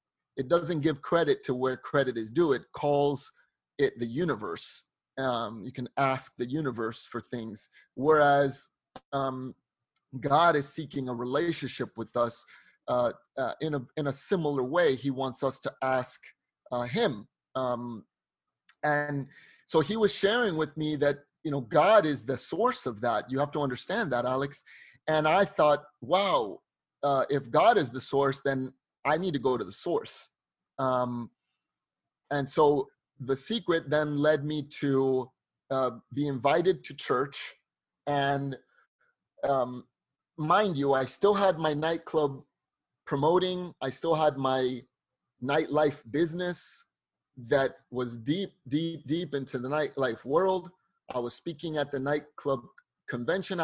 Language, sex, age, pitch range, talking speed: English, male, 30-49, 130-165 Hz, 150 wpm